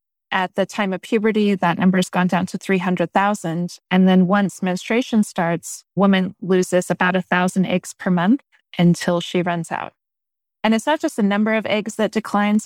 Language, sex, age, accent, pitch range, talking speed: English, female, 20-39, American, 180-220 Hz, 180 wpm